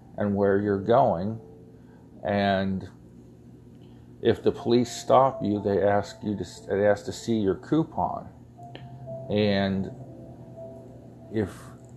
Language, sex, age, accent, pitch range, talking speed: English, male, 40-59, American, 95-120 Hz, 110 wpm